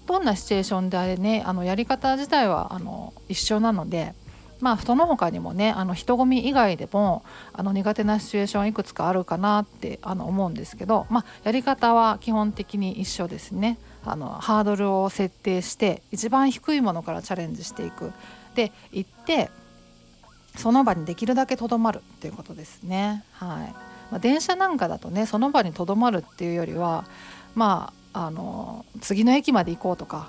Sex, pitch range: female, 180-225 Hz